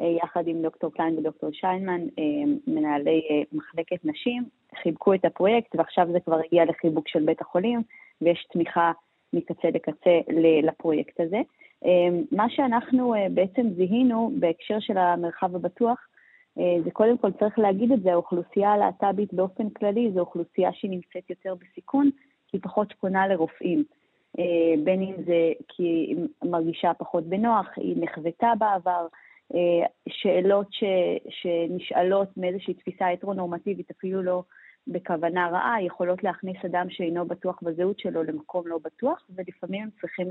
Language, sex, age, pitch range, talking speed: Hebrew, female, 20-39, 170-210 Hz, 130 wpm